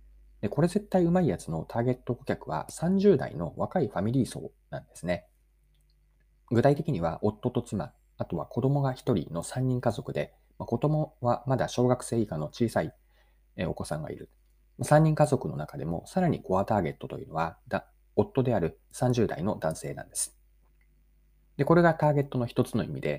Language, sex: Japanese, male